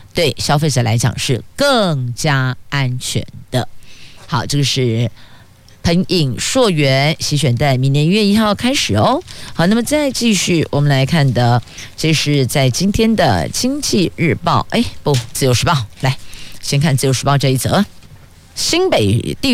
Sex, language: female, Chinese